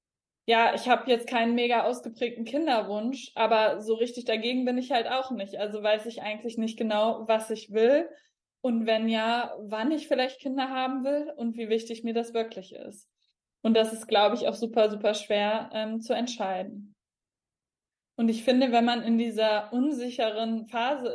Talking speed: 180 wpm